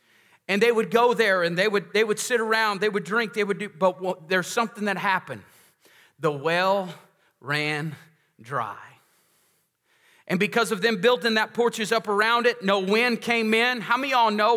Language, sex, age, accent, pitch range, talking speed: English, male, 40-59, American, 190-225 Hz, 190 wpm